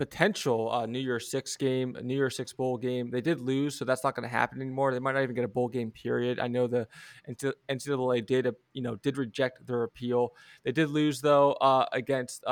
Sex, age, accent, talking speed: male, 20-39, American, 225 wpm